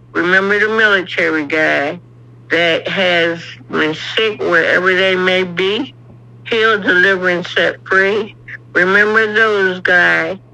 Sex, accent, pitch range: female, American, 160-200 Hz